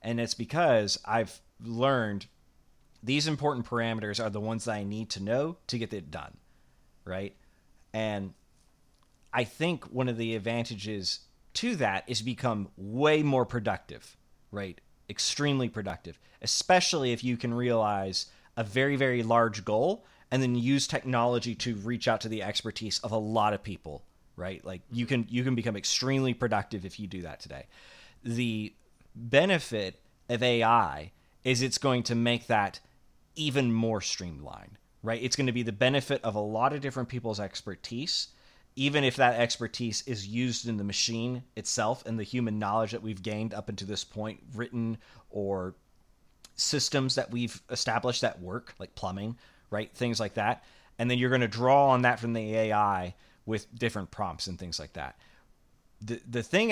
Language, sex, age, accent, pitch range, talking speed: English, male, 30-49, American, 105-125 Hz, 170 wpm